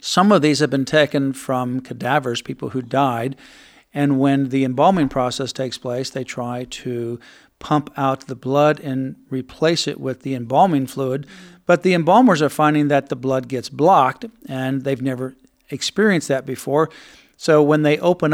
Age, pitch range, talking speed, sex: 50-69, 135-160 Hz, 170 wpm, male